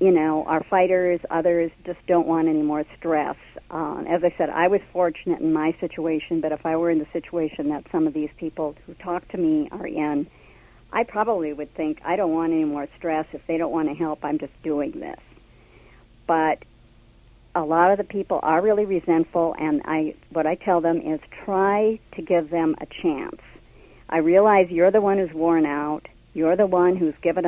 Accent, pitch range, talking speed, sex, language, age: American, 150-180 Hz, 205 wpm, male, English, 50-69